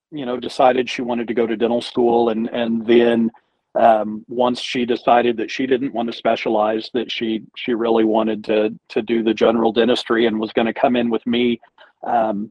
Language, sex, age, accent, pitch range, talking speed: English, male, 40-59, American, 115-125 Hz, 205 wpm